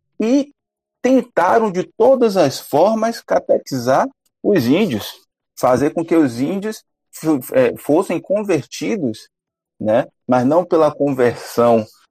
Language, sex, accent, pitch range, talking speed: Portuguese, male, Brazilian, 105-145 Hz, 115 wpm